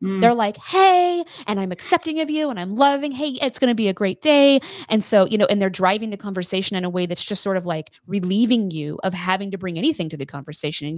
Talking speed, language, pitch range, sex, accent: 255 wpm, English, 180-225 Hz, female, American